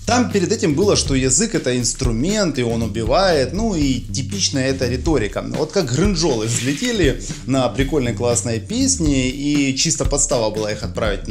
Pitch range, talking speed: 115-155 Hz, 160 wpm